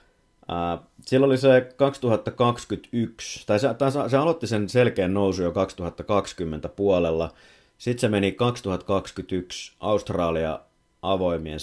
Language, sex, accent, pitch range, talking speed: Finnish, male, native, 85-105 Hz, 105 wpm